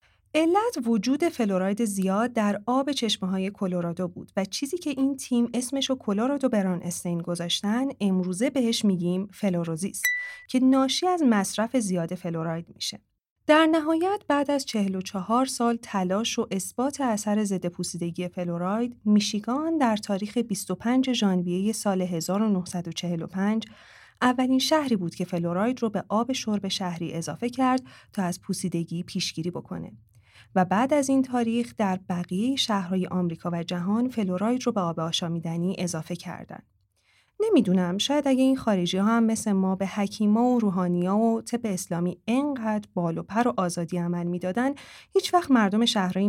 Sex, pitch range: female, 180-245 Hz